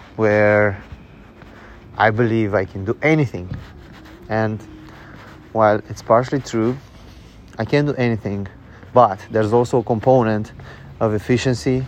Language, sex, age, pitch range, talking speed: English, male, 30-49, 100-120 Hz, 115 wpm